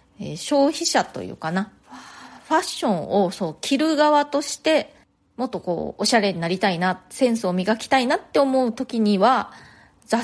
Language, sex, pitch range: Japanese, female, 175-260 Hz